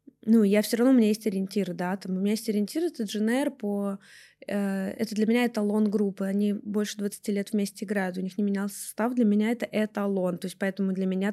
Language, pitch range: Russian, 195-230 Hz